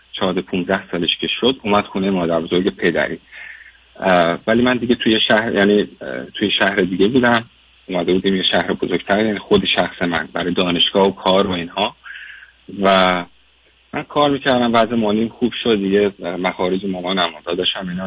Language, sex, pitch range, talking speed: Persian, male, 95-120 Hz, 160 wpm